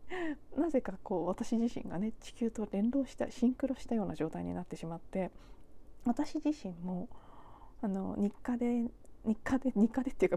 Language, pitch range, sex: Japanese, 190-255 Hz, female